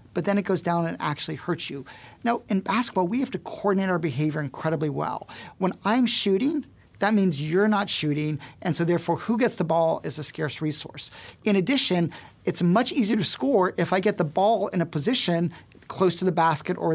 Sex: male